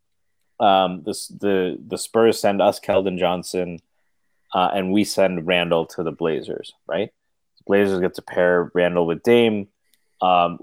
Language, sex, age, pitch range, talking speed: English, male, 20-39, 95-120 Hz, 145 wpm